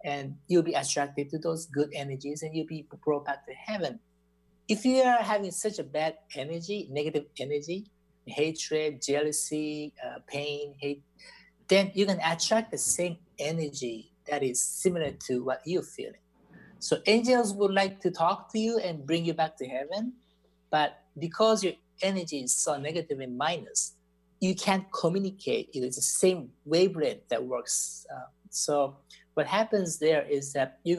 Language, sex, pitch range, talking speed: English, male, 140-185 Hz, 165 wpm